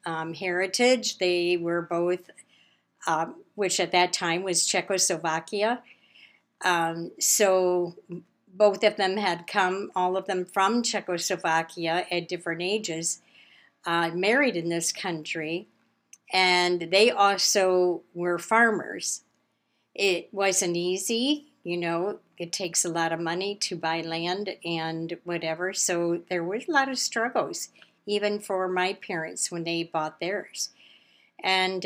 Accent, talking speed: American, 130 wpm